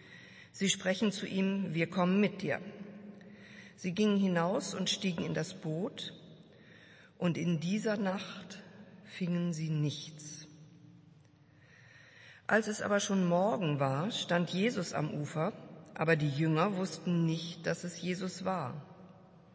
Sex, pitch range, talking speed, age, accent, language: female, 165-195 Hz, 130 wpm, 50-69, German, German